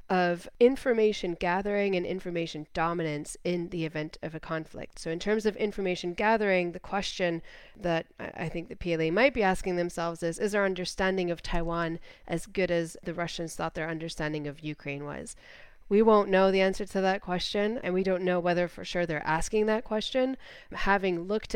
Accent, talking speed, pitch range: American, 185 wpm, 170-195 Hz